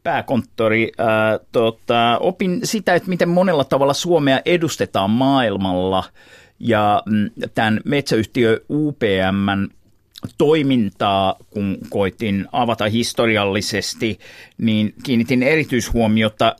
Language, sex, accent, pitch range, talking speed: Finnish, male, native, 110-140 Hz, 80 wpm